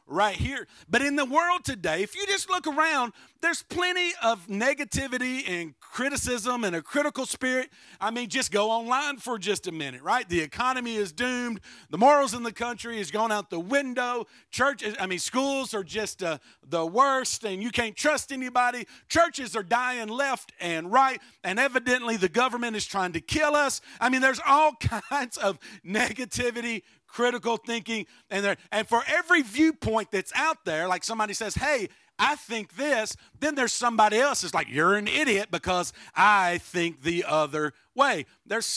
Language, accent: English, American